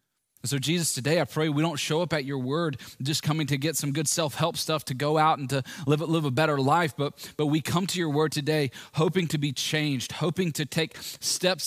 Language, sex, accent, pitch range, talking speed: English, male, American, 110-155 Hz, 240 wpm